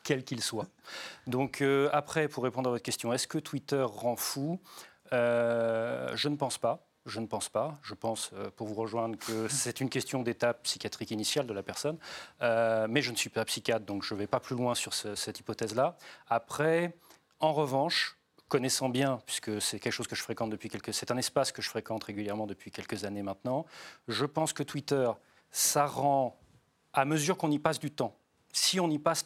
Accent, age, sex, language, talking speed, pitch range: French, 30-49, male, French, 205 wpm, 120-150 Hz